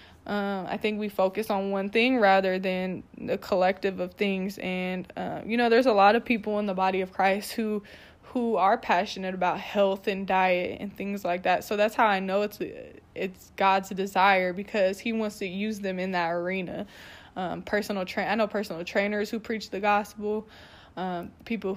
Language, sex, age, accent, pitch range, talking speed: English, female, 20-39, American, 190-215 Hz, 195 wpm